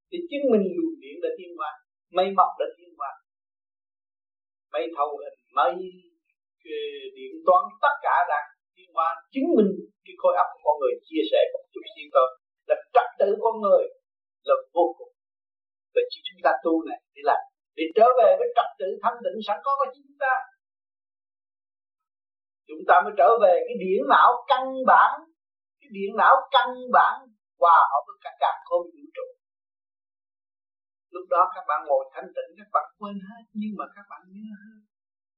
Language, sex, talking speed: Vietnamese, male, 180 wpm